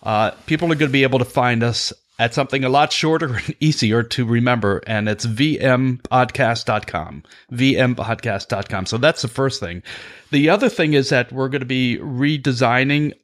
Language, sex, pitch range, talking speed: English, male, 110-140 Hz, 170 wpm